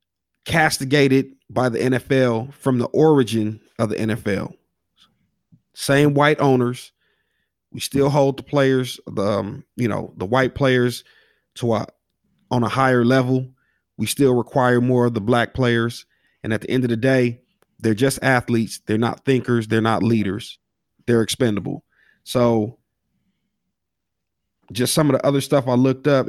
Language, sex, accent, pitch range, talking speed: English, male, American, 110-135 Hz, 155 wpm